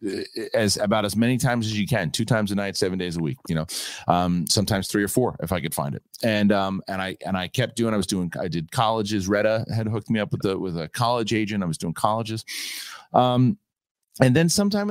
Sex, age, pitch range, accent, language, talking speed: male, 30-49, 105-130 Hz, American, English, 245 wpm